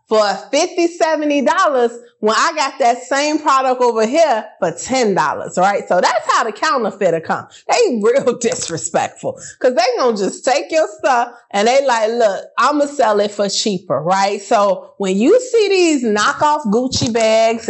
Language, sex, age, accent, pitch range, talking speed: English, female, 20-39, American, 200-285 Hz, 175 wpm